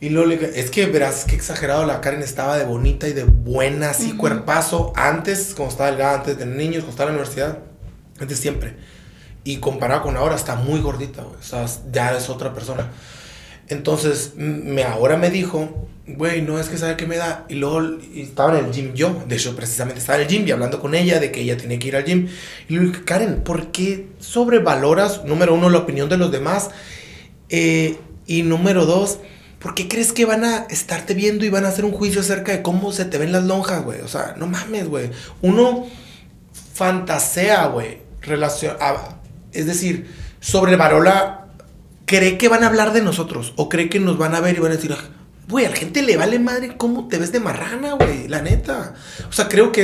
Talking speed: 210 wpm